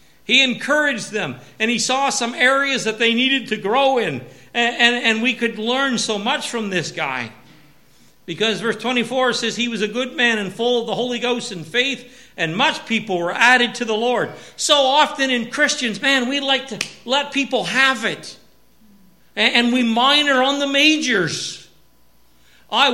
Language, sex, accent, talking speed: English, male, American, 185 wpm